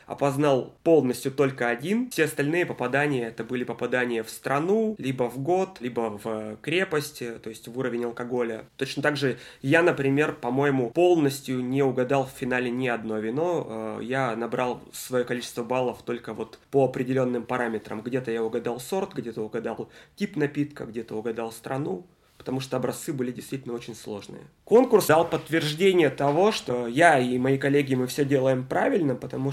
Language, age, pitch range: Russian, 20-39, 125-150 Hz